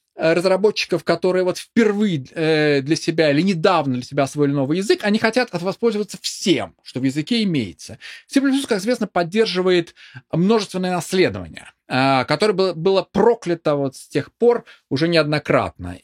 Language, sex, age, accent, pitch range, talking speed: Russian, male, 20-39, native, 160-220 Hz, 145 wpm